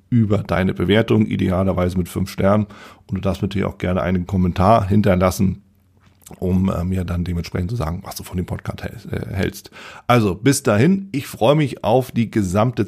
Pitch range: 90-110 Hz